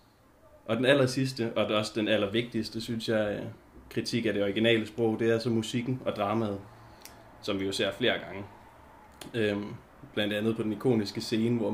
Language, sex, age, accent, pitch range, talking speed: Danish, male, 20-39, native, 100-115 Hz, 185 wpm